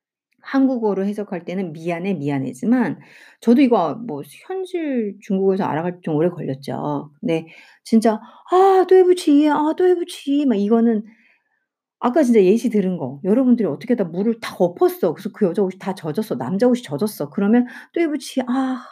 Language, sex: Korean, female